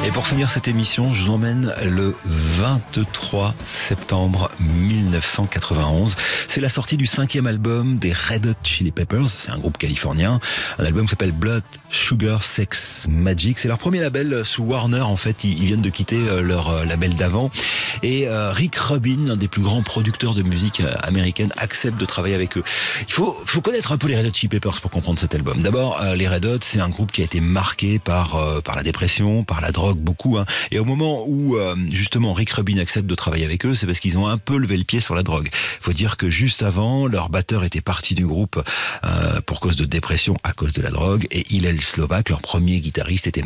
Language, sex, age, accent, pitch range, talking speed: French, male, 40-59, French, 90-120 Hz, 215 wpm